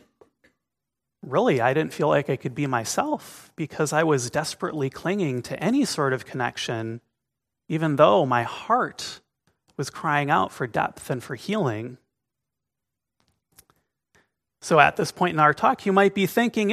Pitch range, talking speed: 135-210 Hz, 150 wpm